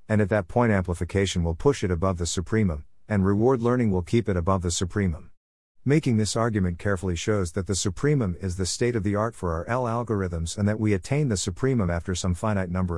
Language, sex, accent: English, male, American